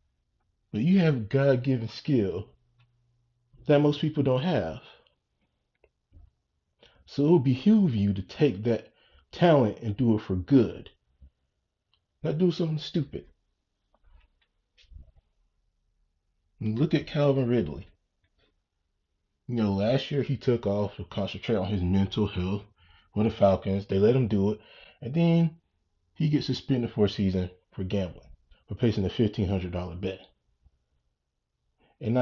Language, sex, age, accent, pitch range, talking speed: English, male, 30-49, American, 85-120 Hz, 130 wpm